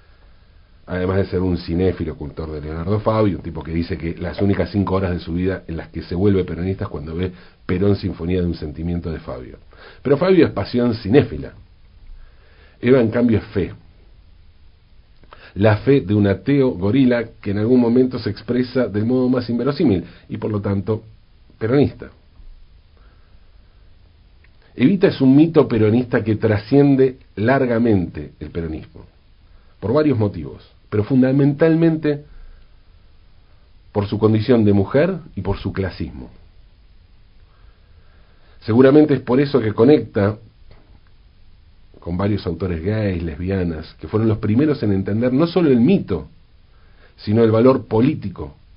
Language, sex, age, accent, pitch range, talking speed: Spanish, male, 50-69, Argentinian, 85-115 Hz, 145 wpm